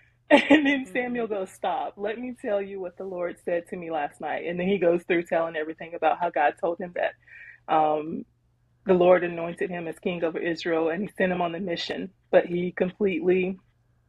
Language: English